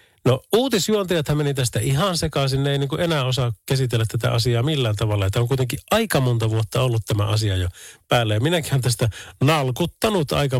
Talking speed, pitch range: 185 wpm, 110-150 Hz